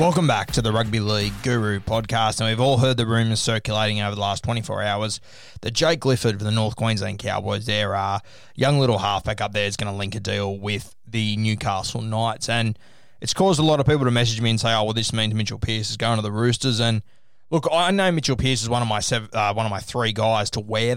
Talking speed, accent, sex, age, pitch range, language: 245 wpm, Australian, male, 20-39, 110-125 Hz, English